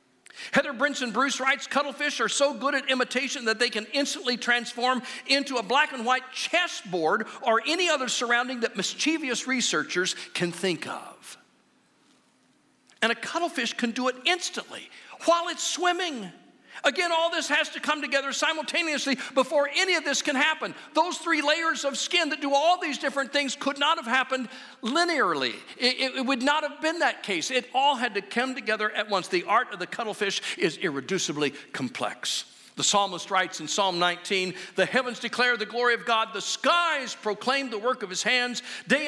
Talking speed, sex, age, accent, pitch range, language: 180 wpm, male, 50-69, American, 195-285 Hz, English